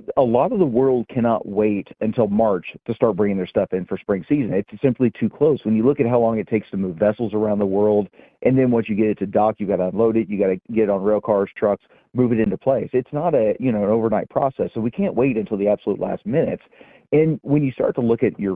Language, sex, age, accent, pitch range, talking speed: English, male, 40-59, American, 100-115 Hz, 280 wpm